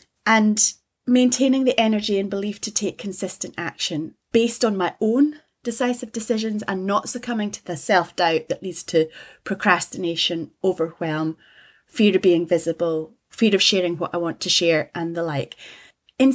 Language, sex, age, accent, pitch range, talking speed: English, female, 30-49, British, 175-220 Hz, 160 wpm